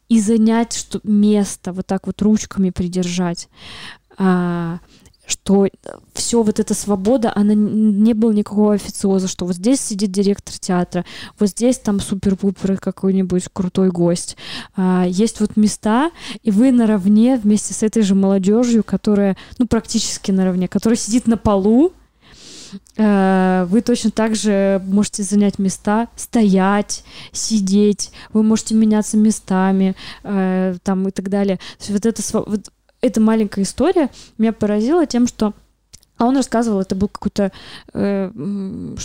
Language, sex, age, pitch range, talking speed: Russian, female, 20-39, 190-220 Hz, 135 wpm